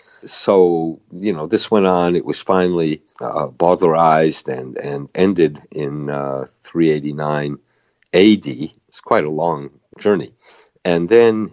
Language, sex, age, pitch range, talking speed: English, male, 50-69, 75-85 Hz, 125 wpm